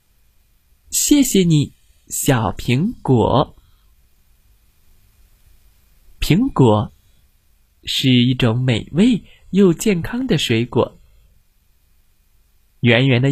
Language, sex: Chinese, male